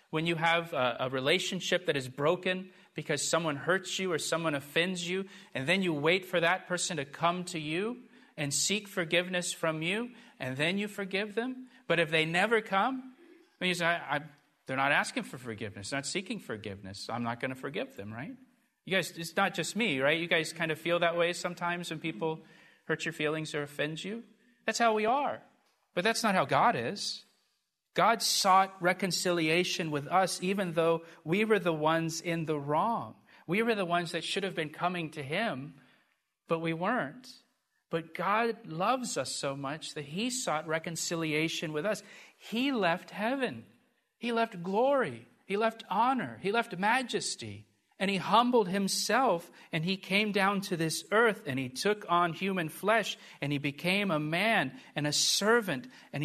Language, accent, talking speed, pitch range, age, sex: English, American, 190 wpm, 160-210 Hz, 40-59, male